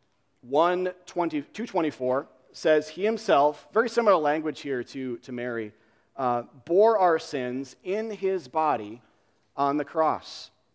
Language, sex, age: English, male, 40-59